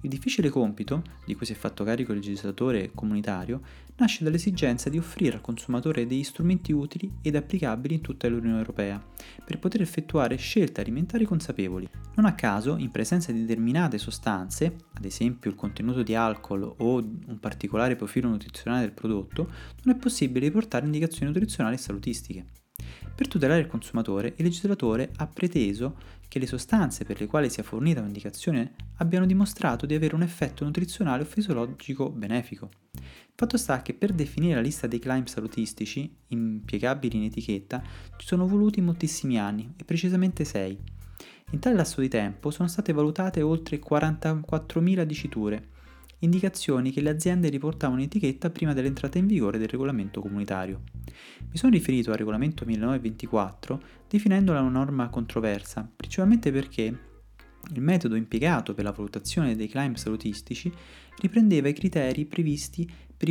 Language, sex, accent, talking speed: Italian, male, native, 155 wpm